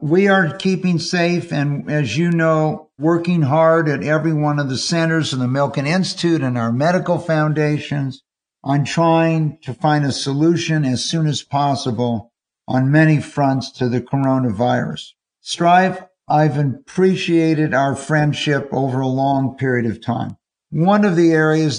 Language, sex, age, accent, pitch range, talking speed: English, male, 60-79, American, 130-160 Hz, 150 wpm